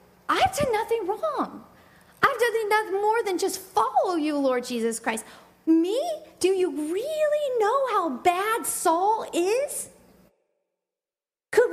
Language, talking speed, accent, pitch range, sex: English, 130 wpm, American, 280-385 Hz, female